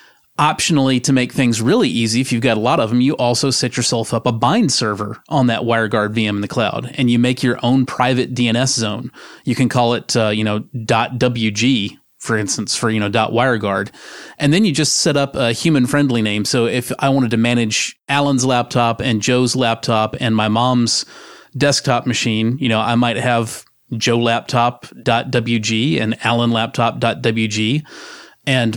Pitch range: 115-130 Hz